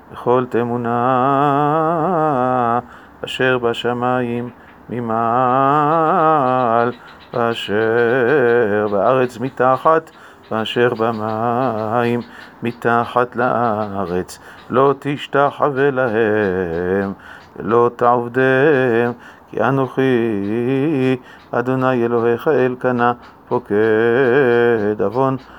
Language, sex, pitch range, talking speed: Hebrew, male, 115-130 Hz, 55 wpm